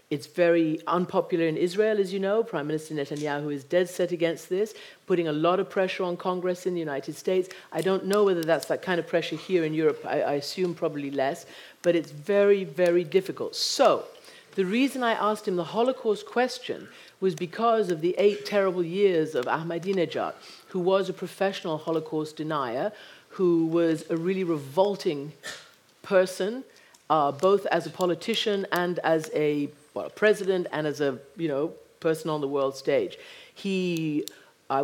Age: 50-69